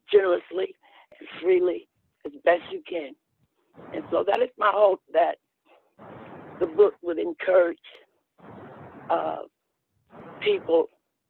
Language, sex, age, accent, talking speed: English, male, 60-79, American, 105 wpm